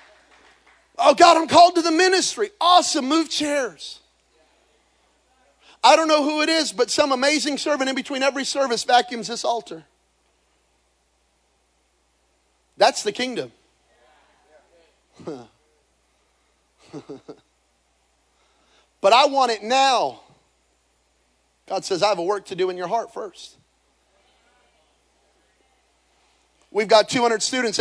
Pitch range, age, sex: 190-275 Hz, 40-59, male